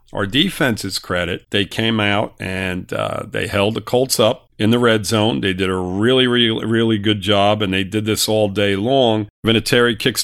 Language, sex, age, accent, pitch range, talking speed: English, male, 50-69, American, 100-115 Hz, 200 wpm